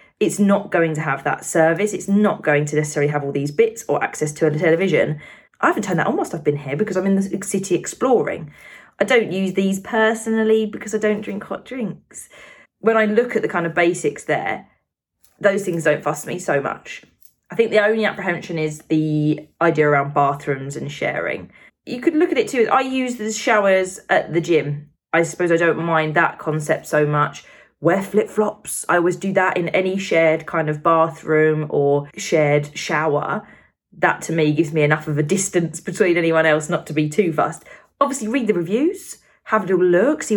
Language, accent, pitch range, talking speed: English, British, 155-210 Hz, 205 wpm